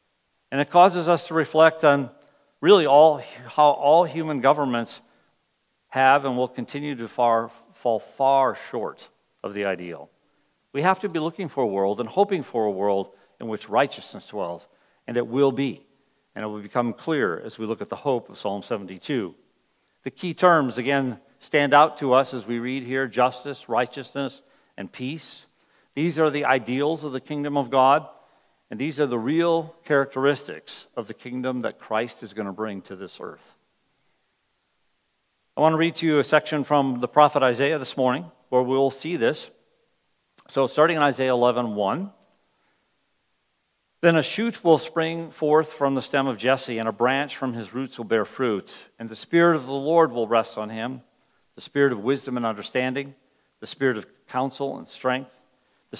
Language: English